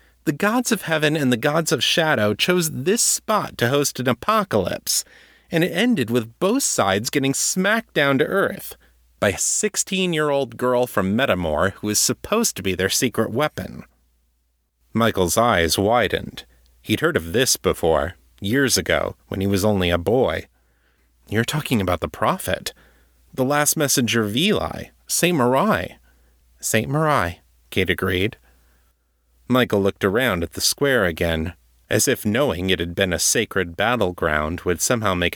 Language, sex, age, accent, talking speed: English, male, 30-49, American, 155 wpm